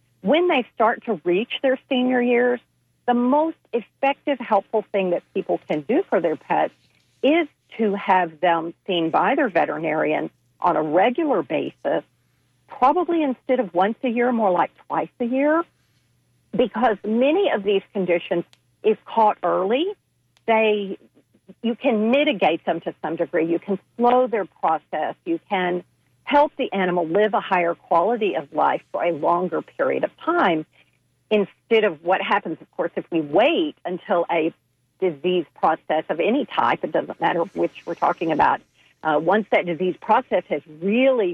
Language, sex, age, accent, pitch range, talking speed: English, female, 50-69, American, 170-245 Hz, 160 wpm